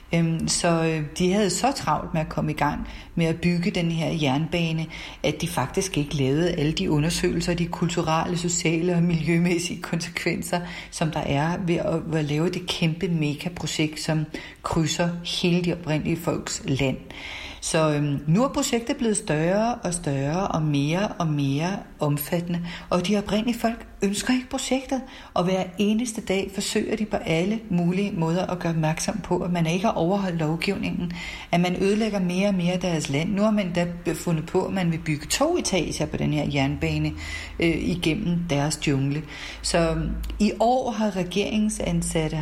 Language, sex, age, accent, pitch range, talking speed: Danish, female, 40-59, native, 160-195 Hz, 170 wpm